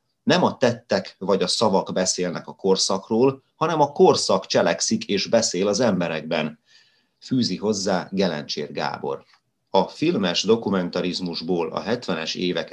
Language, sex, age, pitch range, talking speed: Hungarian, male, 30-49, 90-120 Hz, 125 wpm